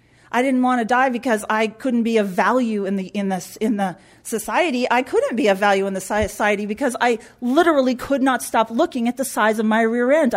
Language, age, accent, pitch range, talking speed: English, 40-59, American, 200-255 Hz, 250 wpm